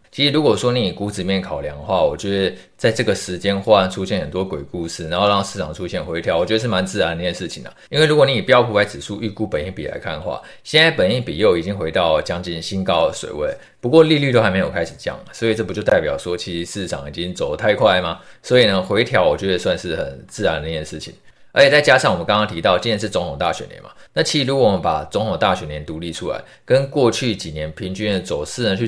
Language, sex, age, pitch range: Chinese, male, 20-39, 90-120 Hz